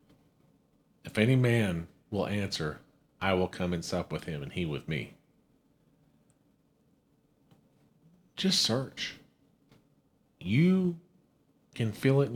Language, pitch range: English, 95-130 Hz